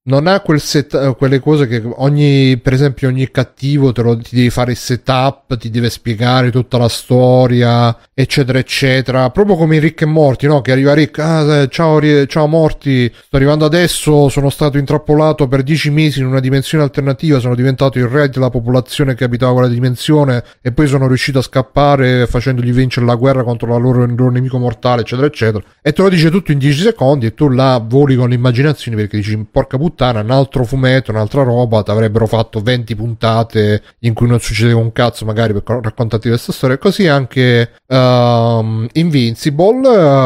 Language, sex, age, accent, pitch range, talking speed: Italian, male, 30-49, native, 120-150 Hz, 185 wpm